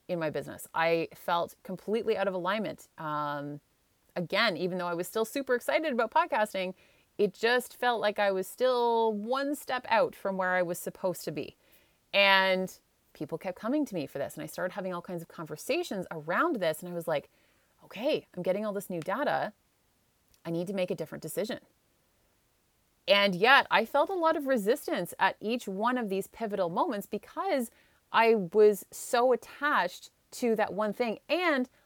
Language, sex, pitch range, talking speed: English, female, 185-245 Hz, 185 wpm